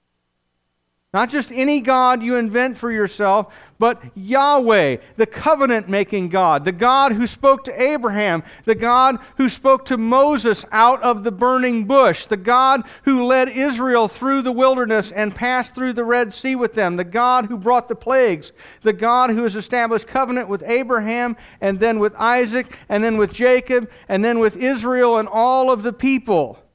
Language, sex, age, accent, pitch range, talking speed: English, male, 50-69, American, 190-255 Hz, 175 wpm